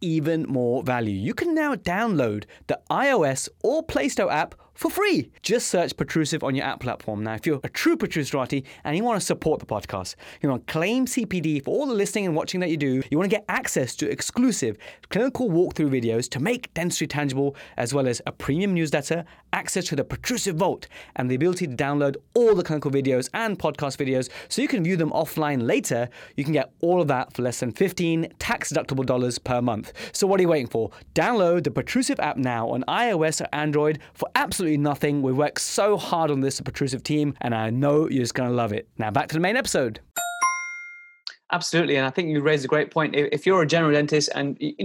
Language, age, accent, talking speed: English, 20-39, British, 220 wpm